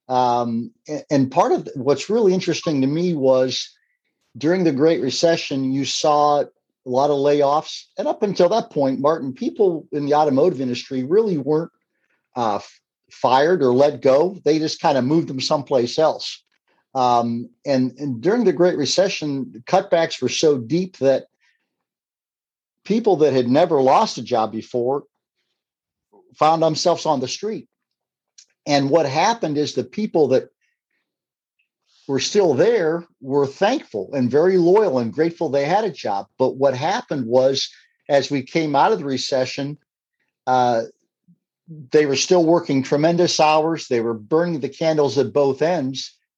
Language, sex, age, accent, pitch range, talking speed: English, male, 50-69, American, 135-170 Hz, 160 wpm